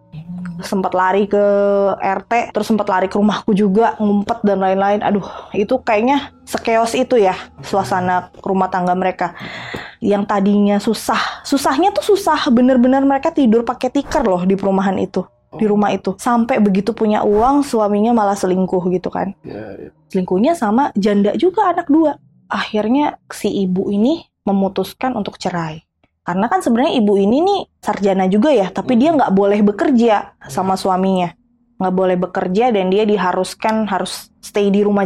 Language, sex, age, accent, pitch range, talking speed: Indonesian, female, 20-39, native, 190-240 Hz, 150 wpm